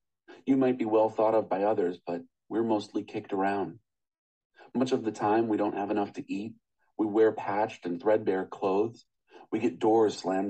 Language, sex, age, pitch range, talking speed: English, male, 40-59, 100-125 Hz, 190 wpm